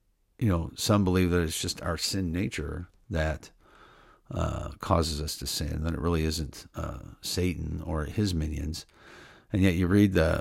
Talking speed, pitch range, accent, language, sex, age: 175 wpm, 80-95 Hz, American, English, male, 50-69